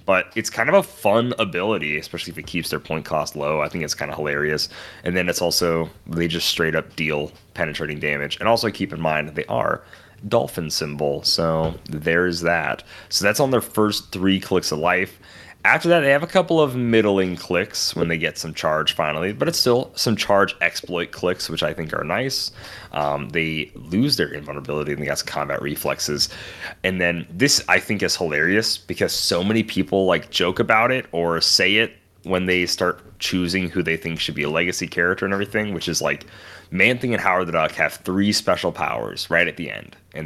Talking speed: 210 wpm